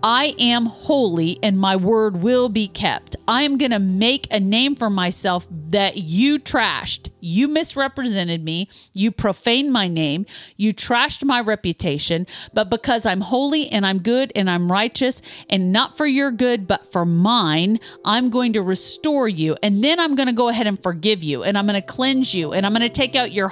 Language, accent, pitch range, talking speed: English, American, 205-285 Hz, 200 wpm